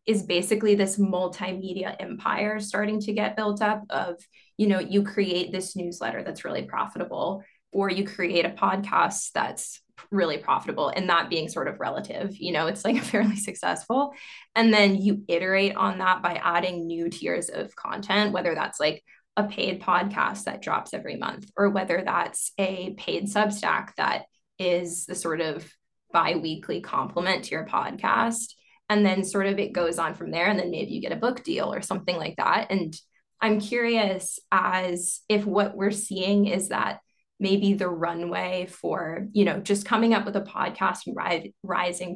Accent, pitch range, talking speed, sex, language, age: American, 180-210 Hz, 175 wpm, female, English, 20-39